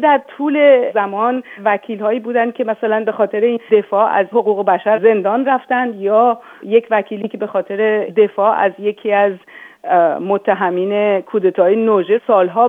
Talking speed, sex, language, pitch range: 145 wpm, female, Persian, 200-240 Hz